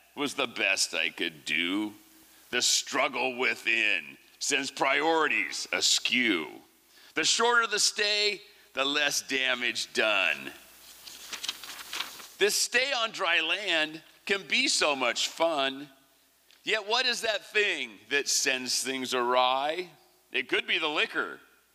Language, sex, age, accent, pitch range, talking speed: English, male, 40-59, American, 150-235 Hz, 120 wpm